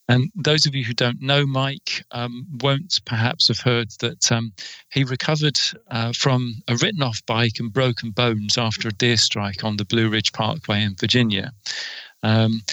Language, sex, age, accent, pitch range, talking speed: English, male, 40-59, British, 110-125 Hz, 180 wpm